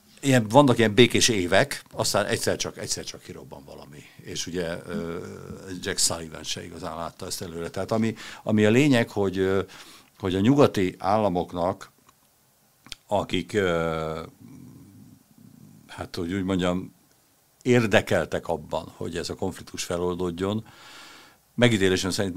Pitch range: 85-105 Hz